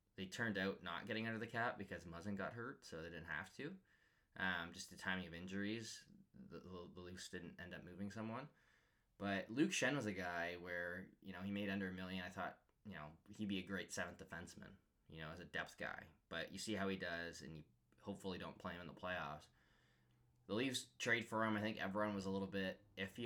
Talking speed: 230 wpm